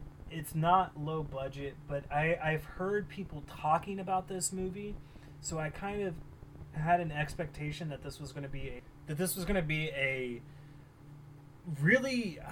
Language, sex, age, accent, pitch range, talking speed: English, male, 20-39, American, 140-165 Hz, 170 wpm